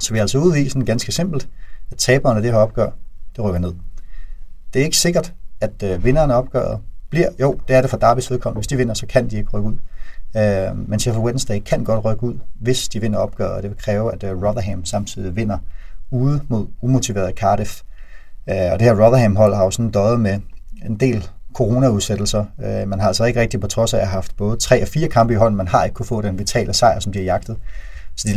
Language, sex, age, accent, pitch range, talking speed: Danish, male, 30-49, native, 95-115 Hz, 230 wpm